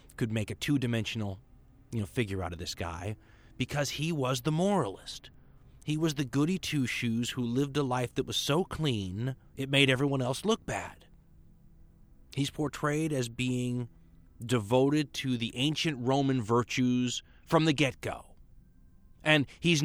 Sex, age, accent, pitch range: male, 30-49, American, 105-135 Hz